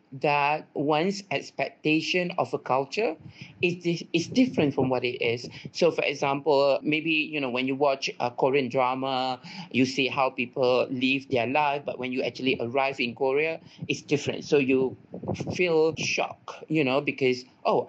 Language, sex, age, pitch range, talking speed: Malay, male, 50-69, 130-155 Hz, 165 wpm